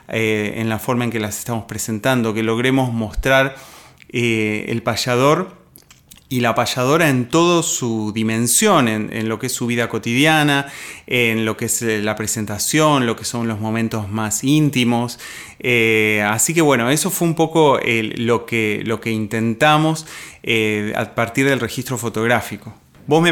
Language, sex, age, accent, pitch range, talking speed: Spanish, male, 20-39, Argentinian, 115-145 Hz, 165 wpm